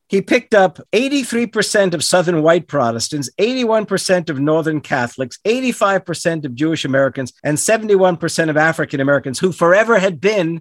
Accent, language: American, English